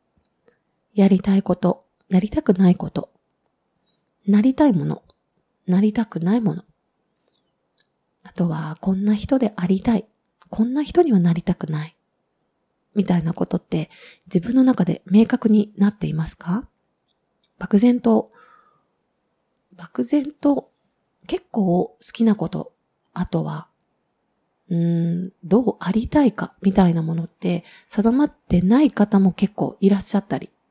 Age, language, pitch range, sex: 30-49, Japanese, 180-230 Hz, female